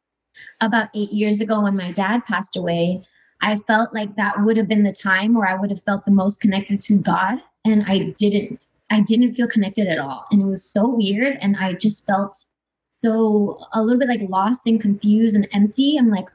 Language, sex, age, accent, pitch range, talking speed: English, female, 20-39, American, 200-235 Hz, 215 wpm